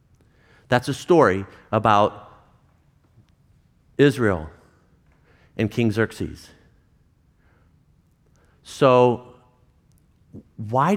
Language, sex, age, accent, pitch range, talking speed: English, male, 50-69, American, 95-130 Hz, 55 wpm